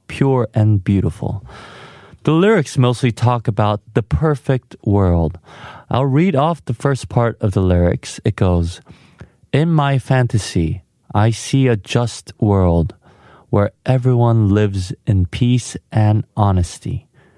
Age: 30-49